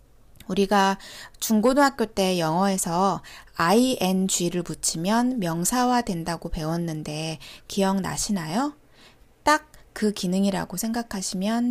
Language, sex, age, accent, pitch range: Korean, female, 20-39, native, 185-265 Hz